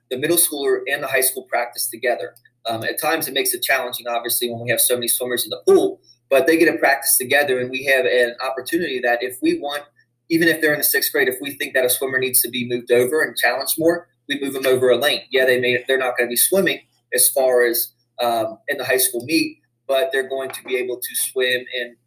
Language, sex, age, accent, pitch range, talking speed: English, male, 20-39, American, 120-165 Hz, 260 wpm